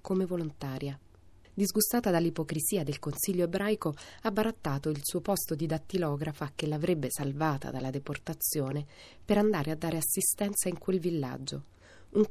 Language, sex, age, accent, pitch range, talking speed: Italian, female, 30-49, native, 145-180 Hz, 135 wpm